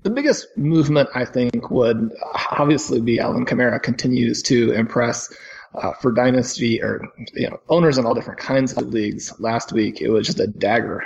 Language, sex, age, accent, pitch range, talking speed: English, male, 30-49, American, 115-130 Hz, 170 wpm